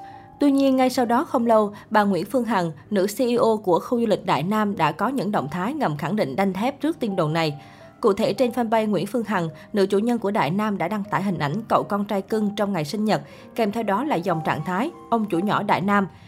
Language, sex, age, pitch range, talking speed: Vietnamese, female, 20-39, 180-230 Hz, 260 wpm